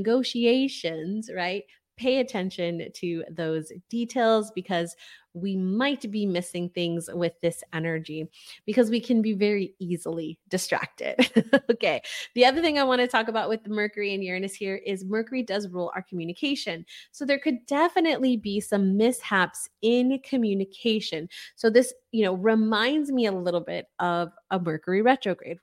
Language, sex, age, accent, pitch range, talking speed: English, female, 20-39, American, 180-235 Hz, 155 wpm